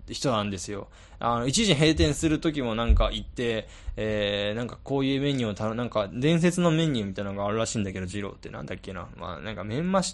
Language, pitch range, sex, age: Japanese, 105-165 Hz, male, 20-39